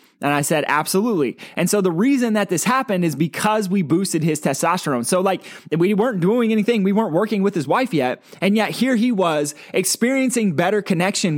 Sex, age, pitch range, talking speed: male, 20-39, 165-210 Hz, 200 wpm